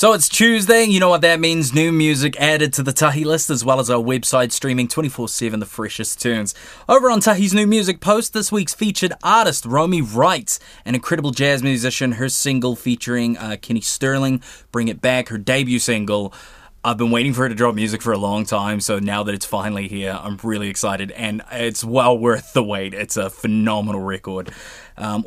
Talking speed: 200 wpm